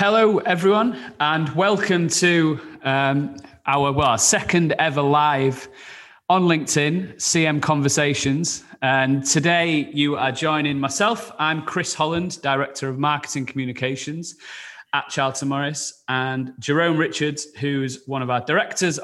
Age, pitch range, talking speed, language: 30-49, 125-155 Hz, 125 wpm, English